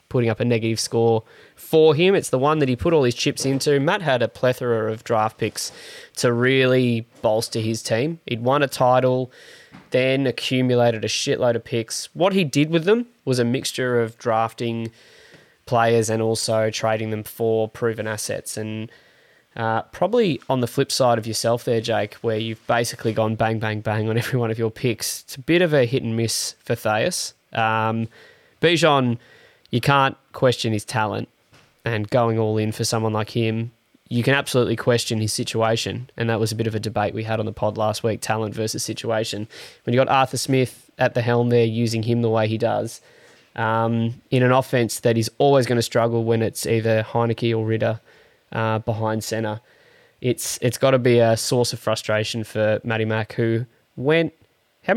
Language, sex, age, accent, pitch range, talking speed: English, male, 20-39, Australian, 110-125 Hz, 195 wpm